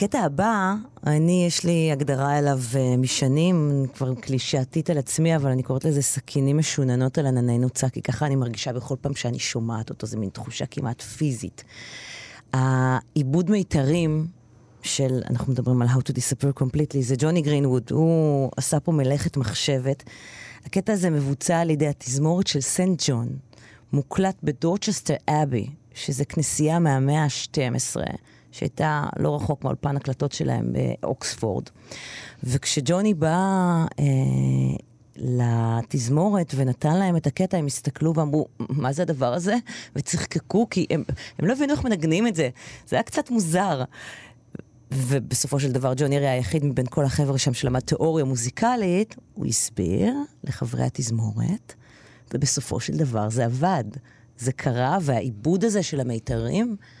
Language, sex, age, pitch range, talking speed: Hebrew, female, 30-49, 125-160 Hz, 140 wpm